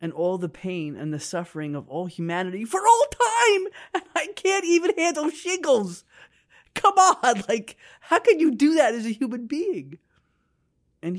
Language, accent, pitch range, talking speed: English, American, 150-225 Hz, 165 wpm